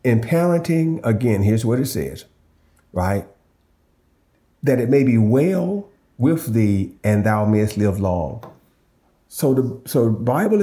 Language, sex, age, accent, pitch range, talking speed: English, male, 40-59, American, 90-125 Hz, 135 wpm